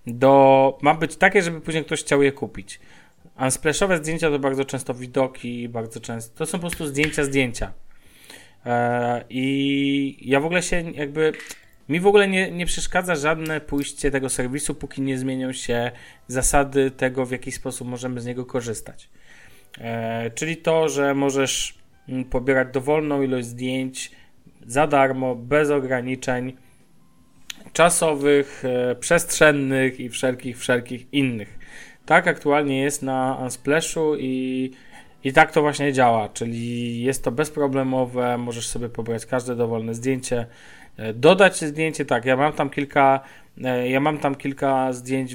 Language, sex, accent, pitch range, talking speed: Polish, male, native, 125-145 Hz, 140 wpm